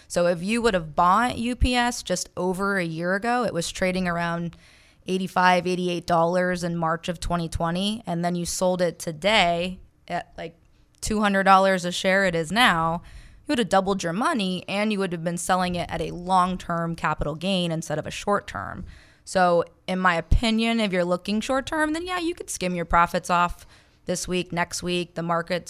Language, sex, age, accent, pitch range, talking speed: English, female, 20-39, American, 170-195 Hz, 185 wpm